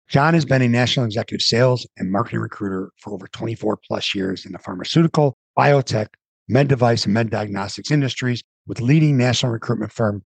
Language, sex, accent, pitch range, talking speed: English, male, American, 110-140 Hz, 175 wpm